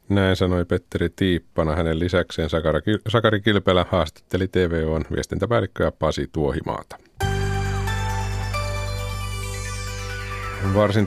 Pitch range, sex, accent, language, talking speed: 80-100 Hz, male, native, Finnish, 70 wpm